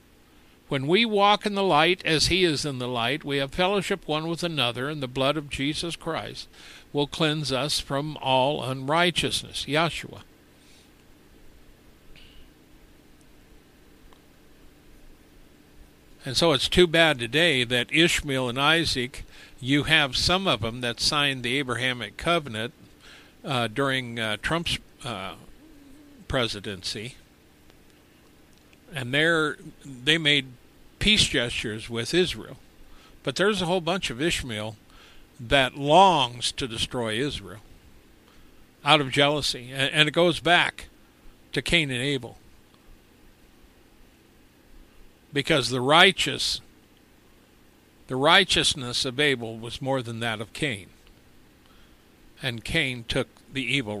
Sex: male